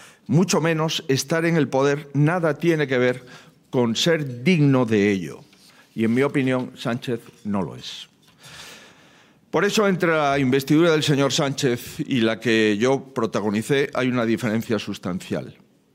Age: 40-59